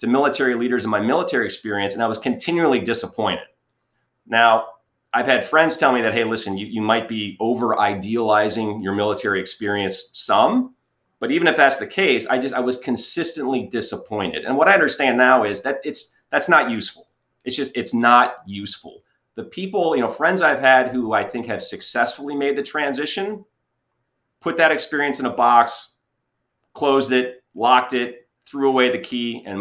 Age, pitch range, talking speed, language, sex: 30-49, 110-140 Hz, 180 wpm, English, male